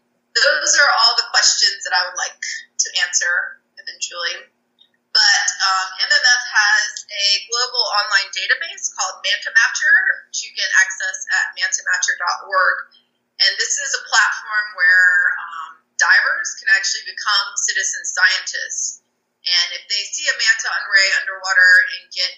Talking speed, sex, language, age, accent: 140 wpm, female, English, 20-39, American